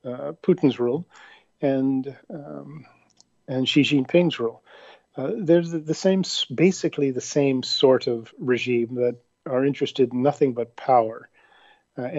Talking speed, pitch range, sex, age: 140 wpm, 130-160 Hz, male, 50-69